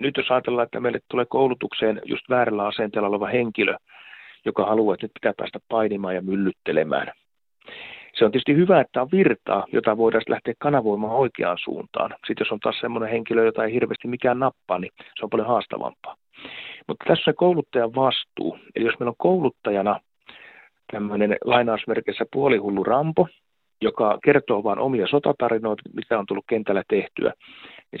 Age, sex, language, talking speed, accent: 40-59, male, Finnish, 160 wpm, native